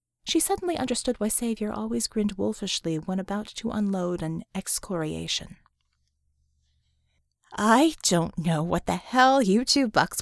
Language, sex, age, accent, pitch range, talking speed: English, female, 30-49, American, 190-290 Hz, 135 wpm